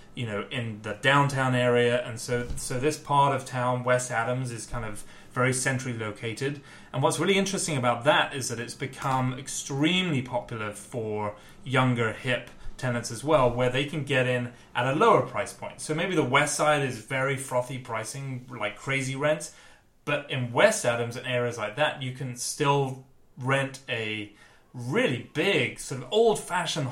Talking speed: 175 wpm